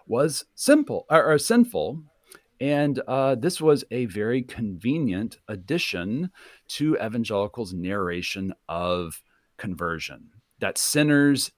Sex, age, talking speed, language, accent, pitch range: male, 40-59, 105 wpm, English, American, 105-145 Hz